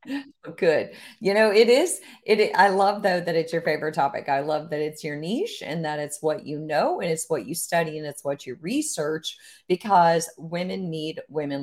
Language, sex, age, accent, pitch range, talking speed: English, female, 40-59, American, 155-235 Hz, 200 wpm